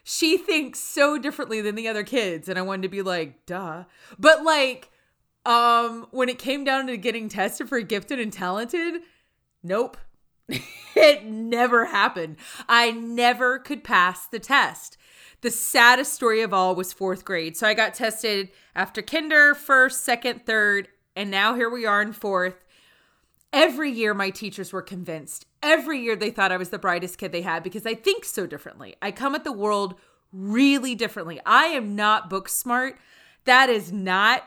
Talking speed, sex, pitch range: 175 wpm, female, 195-265 Hz